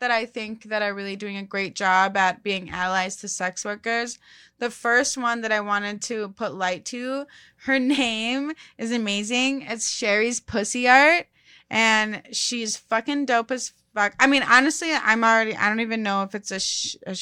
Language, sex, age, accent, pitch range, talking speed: English, female, 20-39, American, 200-245 Hz, 185 wpm